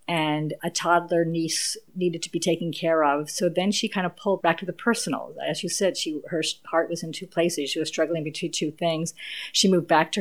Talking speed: 235 wpm